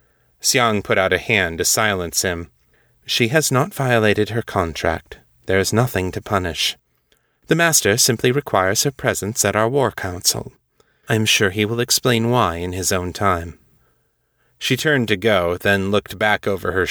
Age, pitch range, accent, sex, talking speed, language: 30-49, 90-115 Hz, American, male, 175 wpm, English